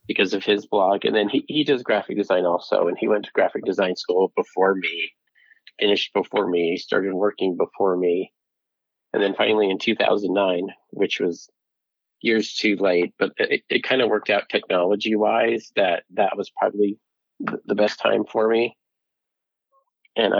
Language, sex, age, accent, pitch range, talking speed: English, male, 30-49, American, 100-115 Hz, 165 wpm